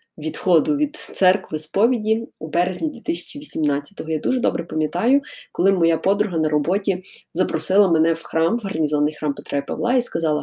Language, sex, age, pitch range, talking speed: Ukrainian, female, 20-39, 155-215 Hz, 160 wpm